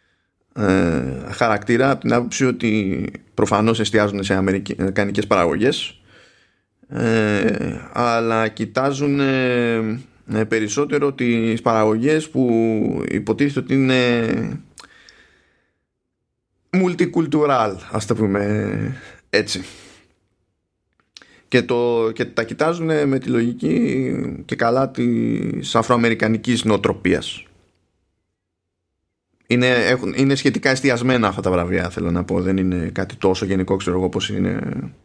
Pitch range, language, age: 95-120 Hz, Greek, 20-39